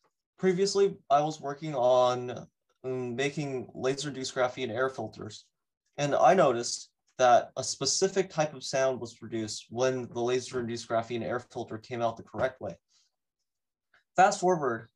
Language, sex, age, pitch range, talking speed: English, male, 20-39, 120-160 Hz, 135 wpm